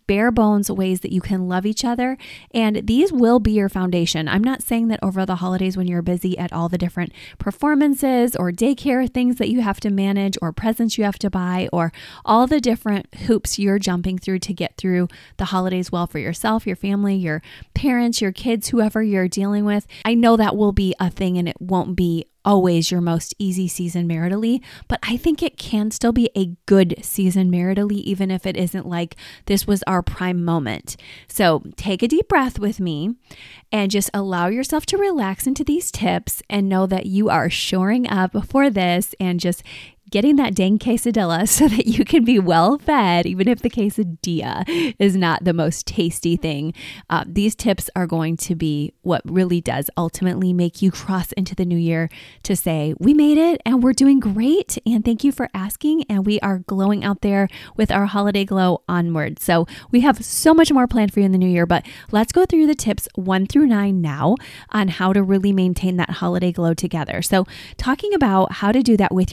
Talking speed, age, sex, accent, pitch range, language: 205 wpm, 20-39, female, American, 180-230 Hz, English